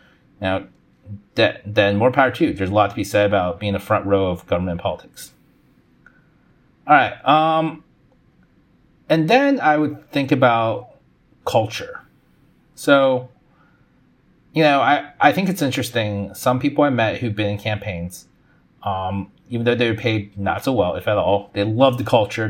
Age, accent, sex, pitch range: 30-49, American, male, 100-130 Hz